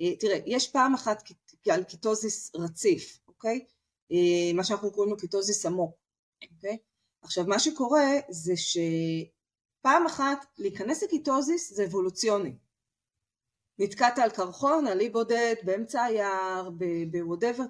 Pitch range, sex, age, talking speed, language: 175-250 Hz, female, 30-49, 115 wpm, Hebrew